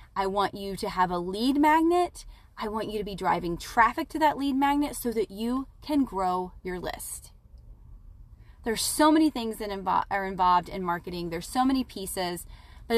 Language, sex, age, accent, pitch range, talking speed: English, female, 30-49, American, 195-250 Hz, 185 wpm